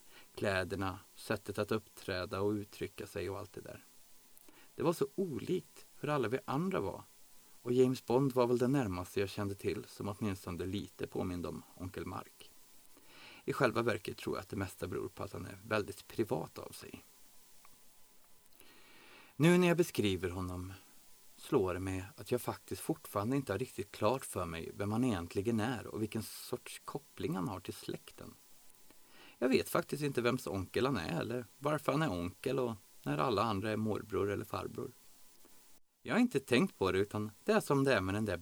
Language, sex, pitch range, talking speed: Swedish, male, 95-130 Hz, 185 wpm